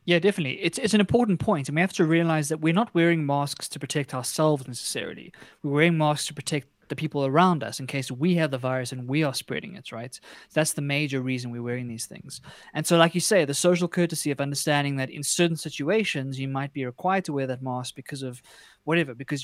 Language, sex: English, male